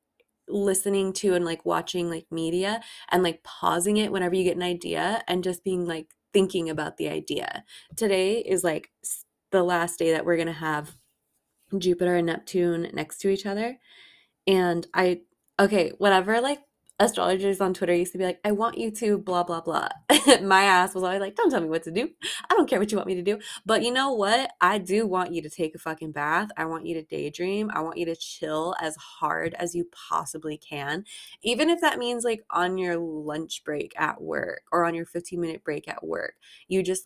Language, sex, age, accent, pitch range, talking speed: English, female, 20-39, American, 165-205 Hz, 210 wpm